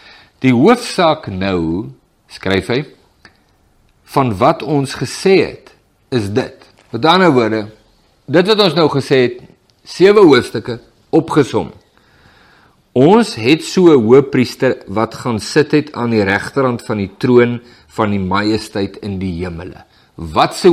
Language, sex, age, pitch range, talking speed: English, male, 50-69, 105-155 Hz, 125 wpm